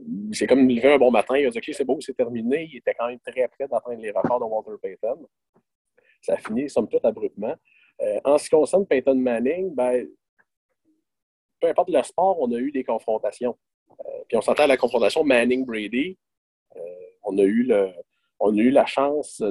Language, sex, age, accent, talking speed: French, male, 40-59, Canadian, 210 wpm